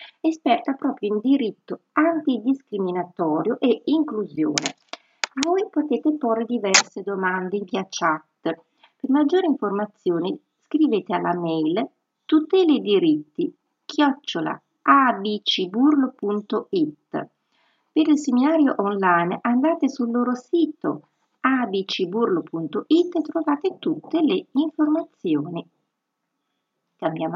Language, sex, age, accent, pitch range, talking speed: Italian, female, 50-69, native, 195-310 Hz, 90 wpm